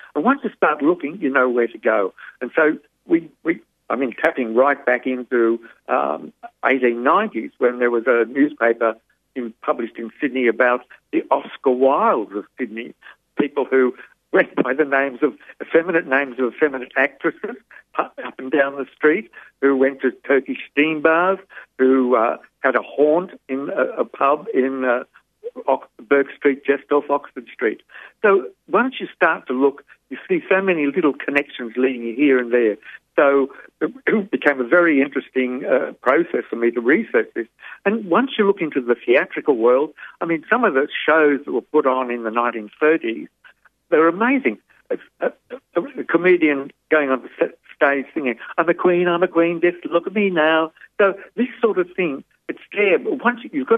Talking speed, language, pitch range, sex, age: 180 wpm, English, 130-180 Hz, male, 60-79